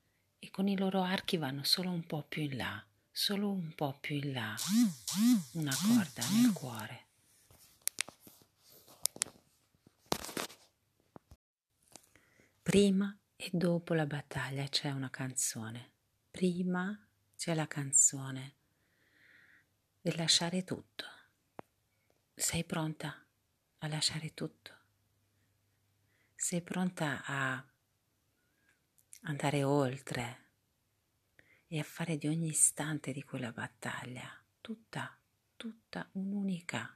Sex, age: female, 40-59